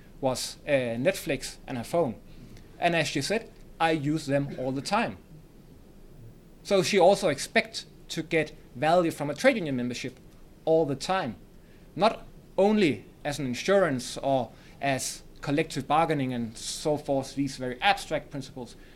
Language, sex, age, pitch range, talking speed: English, male, 30-49, 135-175 Hz, 150 wpm